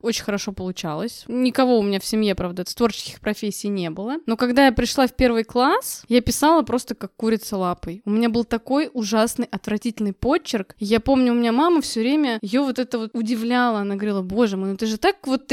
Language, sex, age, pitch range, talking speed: Russian, female, 20-39, 215-275 Hz, 215 wpm